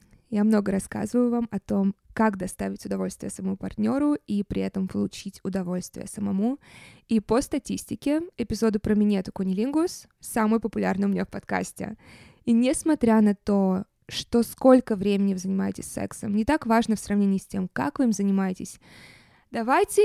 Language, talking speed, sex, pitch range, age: Russian, 155 wpm, female, 195-245 Hz, 20-39